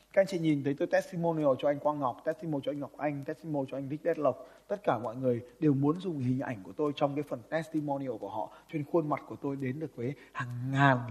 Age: 20-39